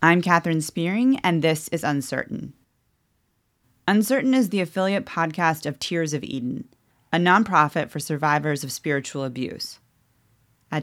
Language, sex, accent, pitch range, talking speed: English, female, American, 150-180 Hz, 135 wpm